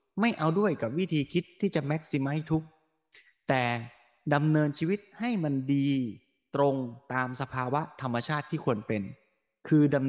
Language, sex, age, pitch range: Thai, male, 20-39, 115-150 Hz